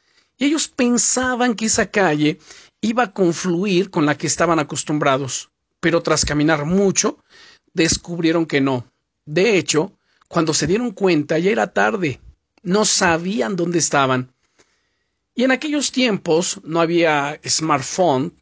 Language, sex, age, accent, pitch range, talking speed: Spanish, male, 50-69, Mexican, 160-215 Hz, 135 wpm